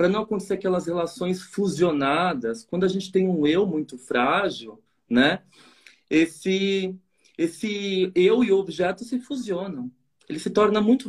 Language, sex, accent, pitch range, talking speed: Portuguese, male, Brazilian, 150-205 Hz, 145 wpm